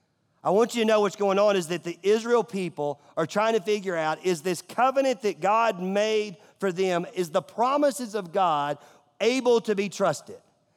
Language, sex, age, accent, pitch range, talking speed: English, male, 40-59, American, 155-210 Hz, 195 wpm